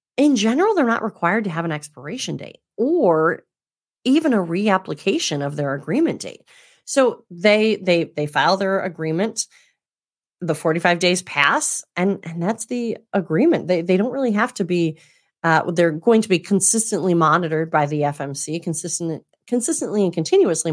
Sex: female